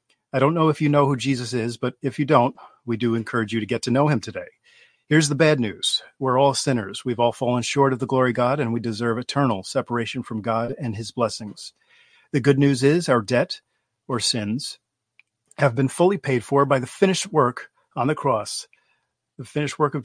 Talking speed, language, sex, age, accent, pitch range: 220 wpm, English, male, 40-59, American, 120-145 Hz